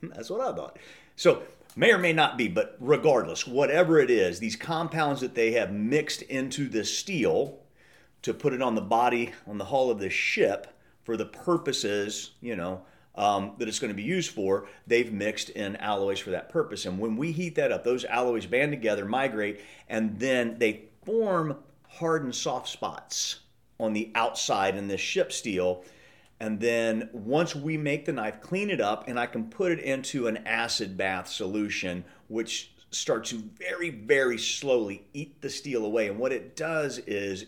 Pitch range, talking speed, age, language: 110-160 Hz, 185 wpm, 40-59, English